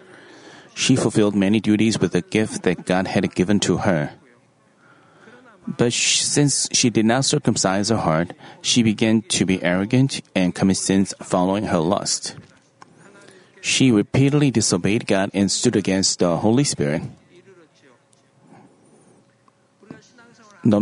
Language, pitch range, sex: Korean, 100-125 Hz, male